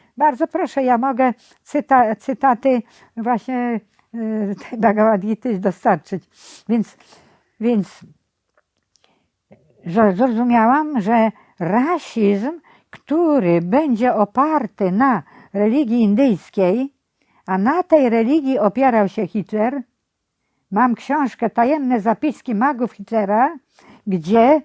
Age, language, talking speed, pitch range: 60-79, Polish, 90 wpm, 210-265 Hz